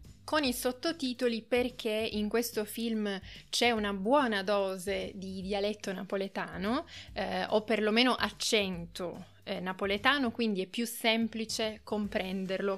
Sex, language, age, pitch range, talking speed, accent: female, Italian, 20-39, 195-235 Hz, 115 wpm, native